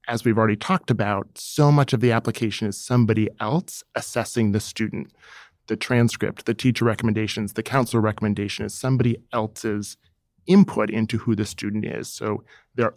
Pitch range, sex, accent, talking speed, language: 110-130 Hz, male, American, 160 wpm, English